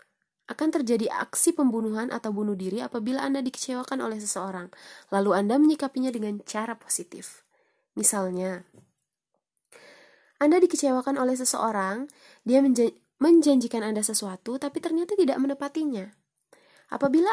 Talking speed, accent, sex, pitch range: 115 wpm, native, female, 200-275 Hz